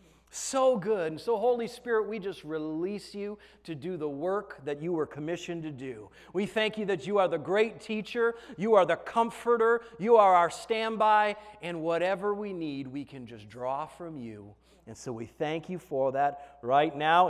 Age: 30-49